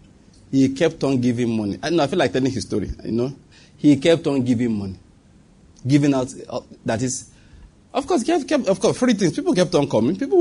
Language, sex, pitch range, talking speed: English, male, 105-145 Hz, 225 wpm